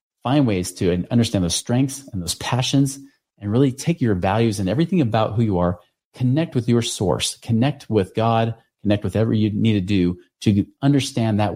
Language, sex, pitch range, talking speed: English, male, 95-125 Hz, 190 wpm